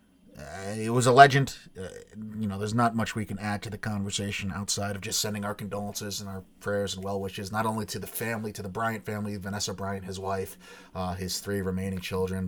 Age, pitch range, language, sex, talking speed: 30-49, 95-110 Hz, English, male, 225 wpm